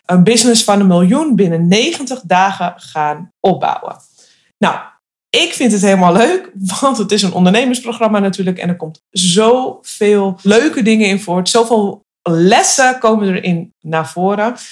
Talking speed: 145 wpm